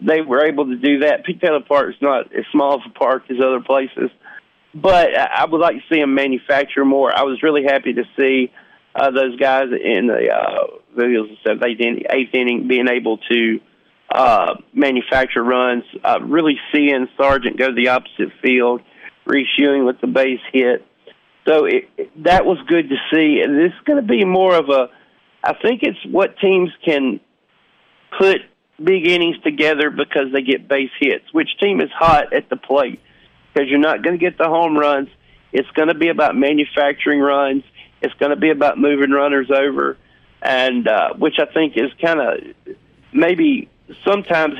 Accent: American